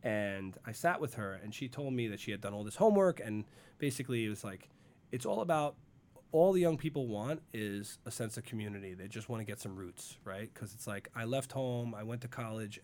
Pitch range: 100-125 Hz